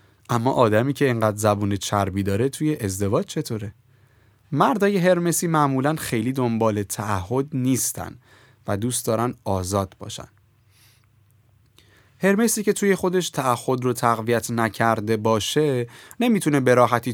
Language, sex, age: Persian, male, 20-39